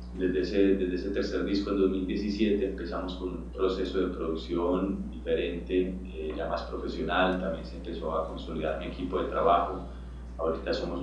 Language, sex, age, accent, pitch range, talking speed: Spanish, male, 30-49, Colombian, 80-95 Hz, 165 wpm